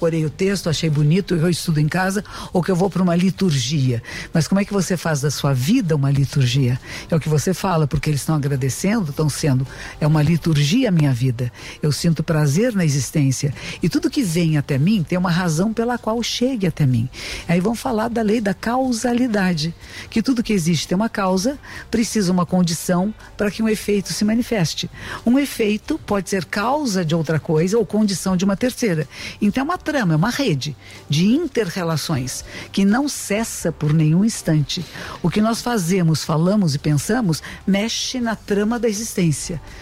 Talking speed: 190 wpm